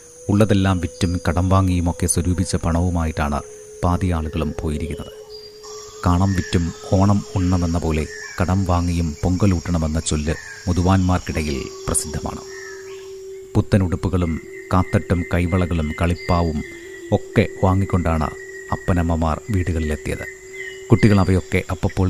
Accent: native